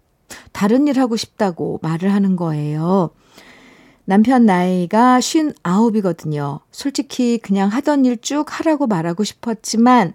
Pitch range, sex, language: 180-235 Hz, female, Korean